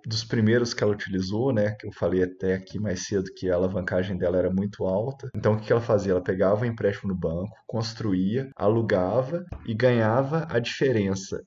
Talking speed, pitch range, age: 195 wpm, 100-125 Hz, 20-39